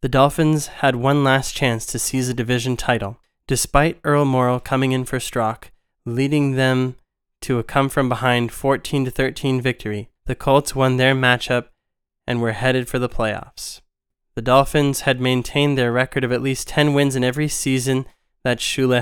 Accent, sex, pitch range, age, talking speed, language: American, male, 120-140 Hz, 20-39, 165 wpm, English